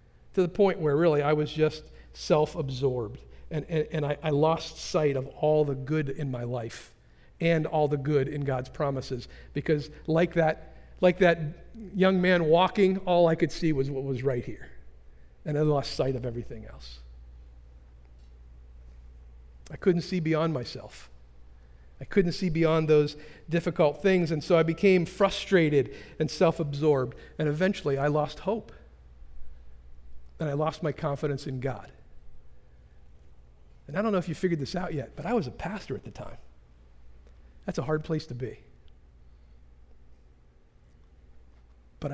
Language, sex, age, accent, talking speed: English, male, 50-69, American, 155 wpm